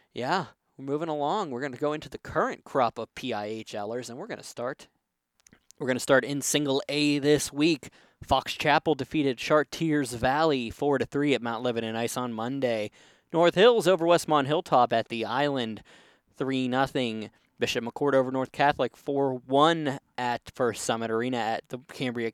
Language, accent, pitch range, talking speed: English, American, 125-150 Hz, 175 wpm